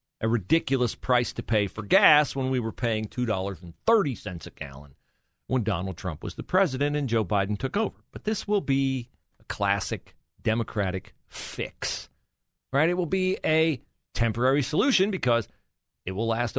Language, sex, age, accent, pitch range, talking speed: English, male, 40-59, American, 105-150 Hz, 160 wpm